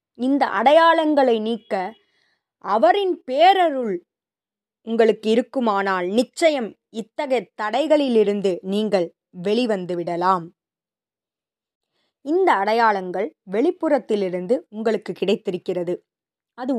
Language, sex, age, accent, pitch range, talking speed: Tamil, female, 20-39, native, 190-265 Hz, 70 wpm